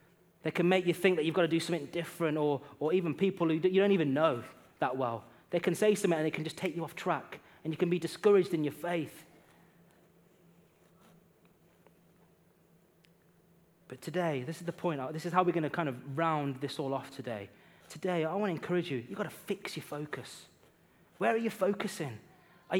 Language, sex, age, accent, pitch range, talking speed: English, male, 20-39, British, 165-200 Hz, 205 wpm